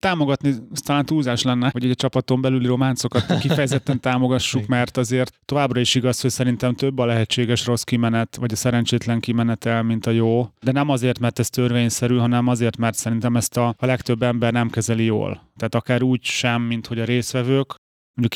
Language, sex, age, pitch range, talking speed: Hungarian, male, 30-49, 115-130 Hz, 190 wpm